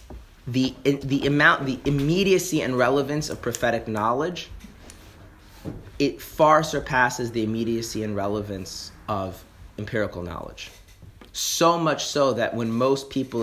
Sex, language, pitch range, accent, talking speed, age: male, English, 100-125 Hz, American, 120 wpm, 30-49